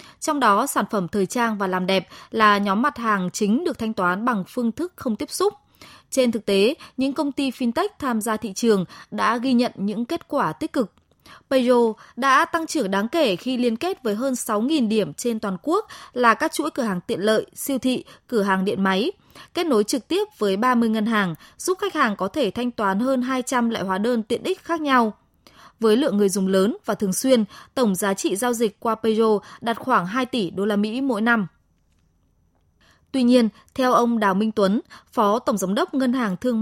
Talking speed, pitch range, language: 220 wpm, 200-260 Hz, Vietnamese